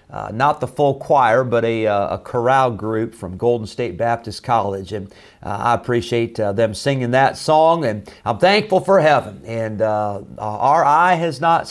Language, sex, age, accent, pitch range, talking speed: English, male, 50-69, American, 115-150 Hz, 185 wpm